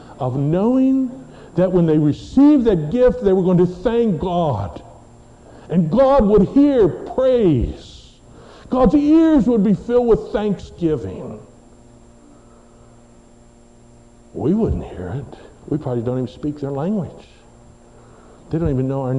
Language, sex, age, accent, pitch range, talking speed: English, male, 60-79, American, 120-170 Hz, 130 wpm